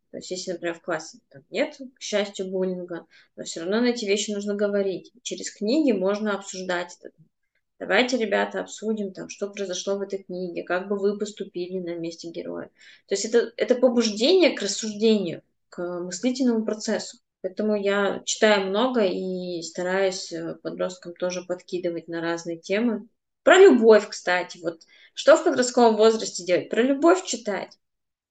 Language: Russian